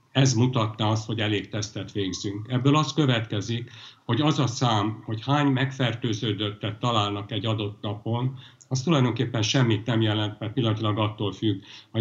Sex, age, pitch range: male, 60-79, 105-125 Hz